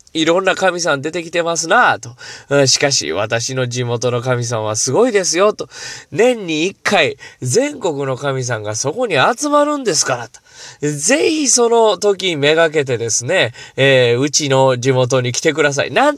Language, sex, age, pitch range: Japanese, male, 20-39, 120-175 Hz